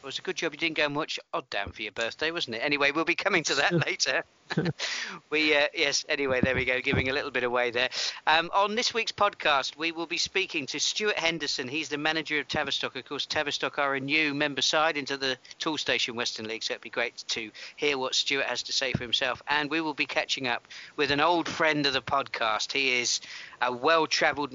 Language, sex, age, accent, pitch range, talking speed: English, male, 50-69, British, 130-165 Hz, 235 wpm